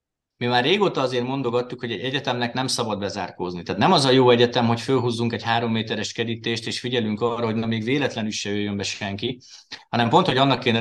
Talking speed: 210 wpm